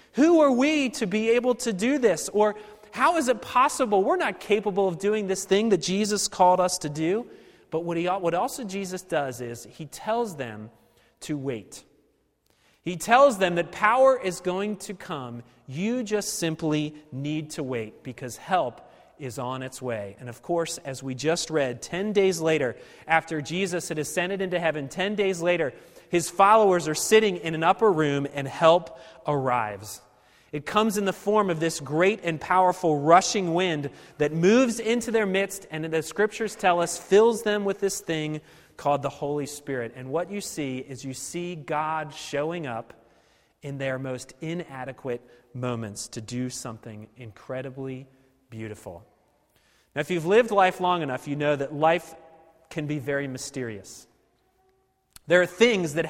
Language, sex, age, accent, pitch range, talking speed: English, male, 30-49, American, 135-195 Hz, 170 wpm